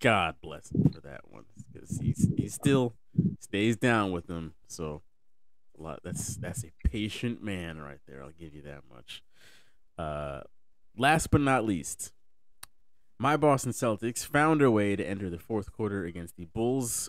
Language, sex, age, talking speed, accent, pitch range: English, male, 30-49, 160 wpm, American, 90-120 Hz